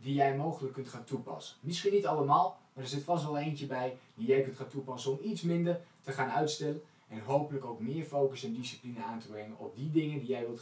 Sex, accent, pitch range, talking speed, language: male, Dutch, 130-155 Hz, 245 wpm, Dutch